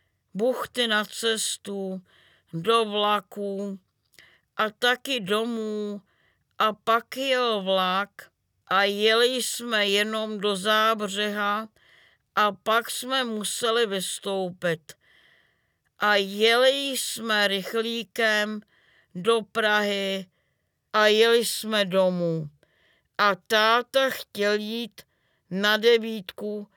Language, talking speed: Czech, 85 wpm